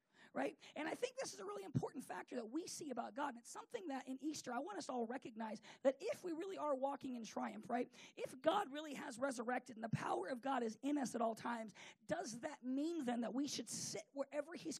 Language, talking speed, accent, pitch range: English, 245 wpm, American, 235-285 Hz